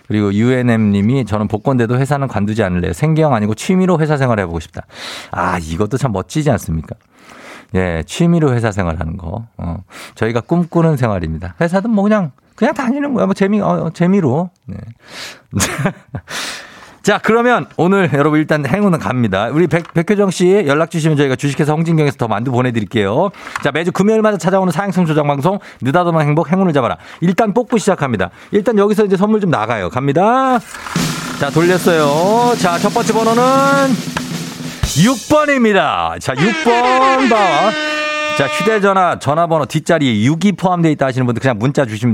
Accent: native